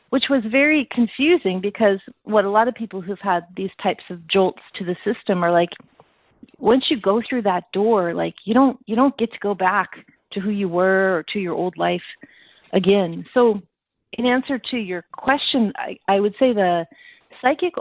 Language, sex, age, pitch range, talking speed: English, female, 40-59, 180-235 Hz, 195 wpm